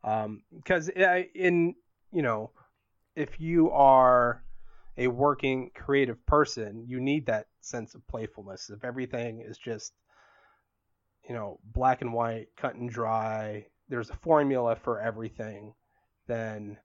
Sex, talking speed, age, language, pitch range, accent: male, 130 wpm, 30-49, English, 110-130 Hz, American